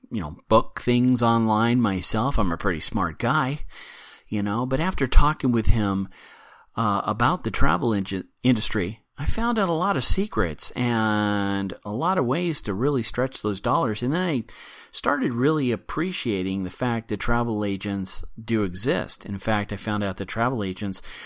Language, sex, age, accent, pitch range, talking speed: English, male, 40-59, American, 95-115 Hz, 175 wpm